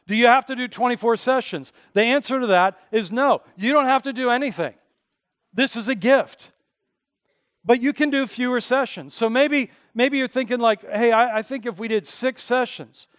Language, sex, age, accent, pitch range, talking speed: English, male, 40-59, American, 200-245 Hz, 200 wpm